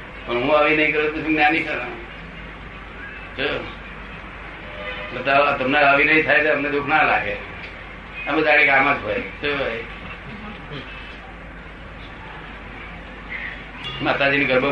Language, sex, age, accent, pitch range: Gujarati, male, 60-79, native, 130-150 Hz